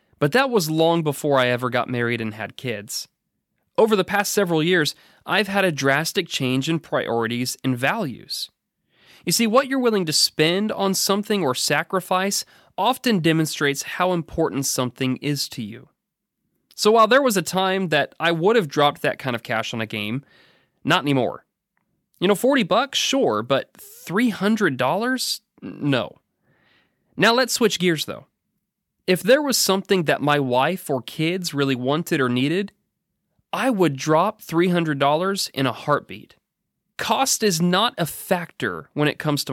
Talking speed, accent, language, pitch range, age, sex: 160 wpm, American, English, 135-195 Hz, 30-49, male